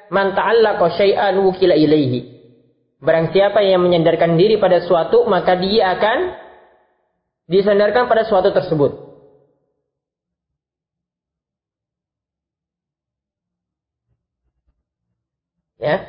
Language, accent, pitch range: Indonesian, native, 180-240 Hz